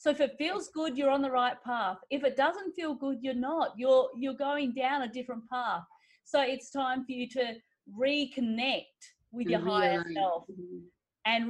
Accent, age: Australian, 30-49